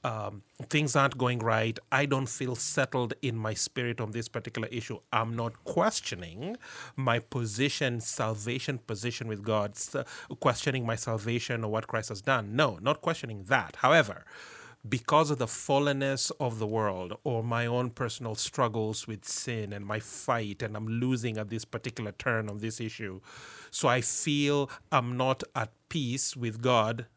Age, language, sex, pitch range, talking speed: 30-49, English, male, 115-135 Hz, 165 wpm